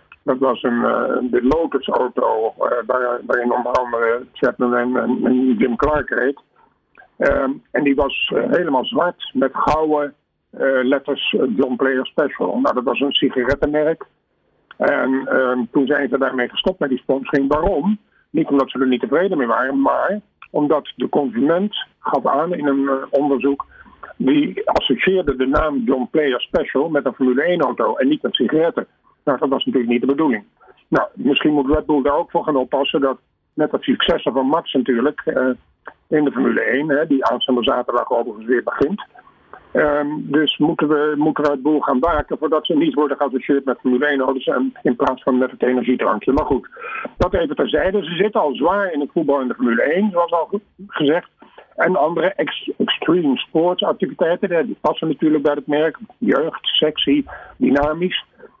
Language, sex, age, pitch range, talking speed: Dutch, male, 50-69, 130-160 Hz, 180 wpm